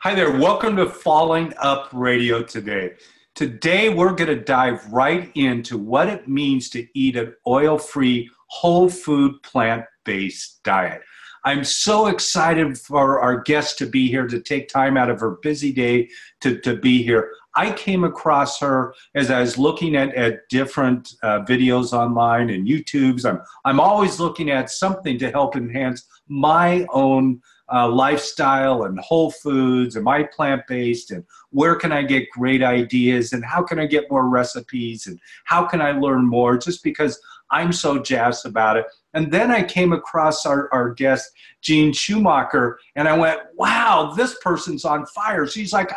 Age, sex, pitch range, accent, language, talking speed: 40-59, male, 125-170 Hz, American, English, 170 wpm